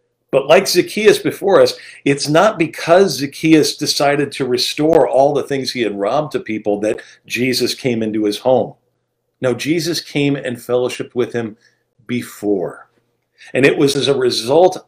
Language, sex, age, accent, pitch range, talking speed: English, male, 40-59, American, 120-185 Hz, 160 wpm